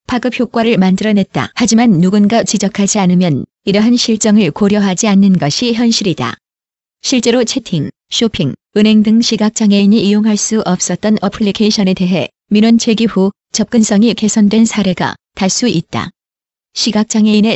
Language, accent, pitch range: Korean, native, 195-225 Hz